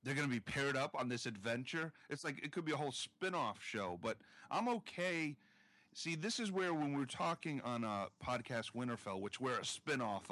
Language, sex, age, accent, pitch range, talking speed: English, male, 40-59, American, 100-140 Hz, 210 wpm